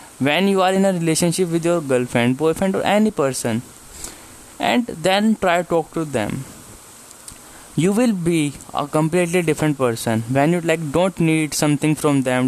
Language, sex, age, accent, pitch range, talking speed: English, male, 20-39, Indian, 145-185 Hz, 170 wpm